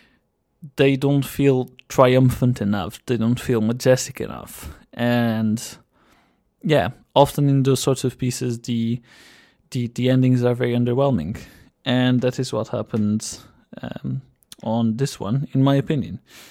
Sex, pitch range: male, 115-140 Hz